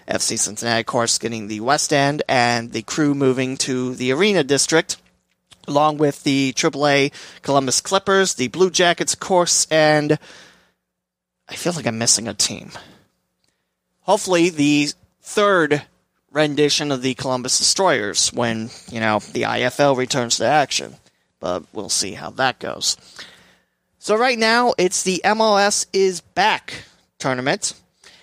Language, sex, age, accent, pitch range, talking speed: English, male, 30-49, American, 130-180 Hz, 135 wpm